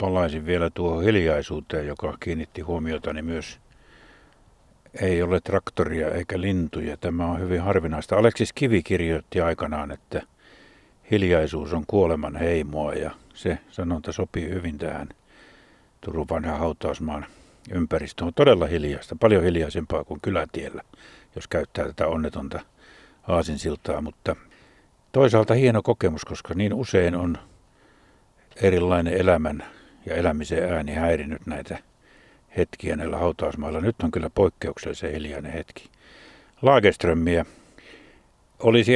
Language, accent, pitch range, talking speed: Finnish, native, 80-95 Hz, 115 wpm